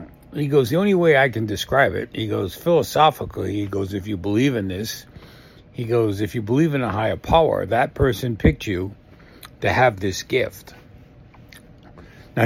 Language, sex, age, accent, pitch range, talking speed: English, male, 60-79, American, 100-140 Hz, 180 wpm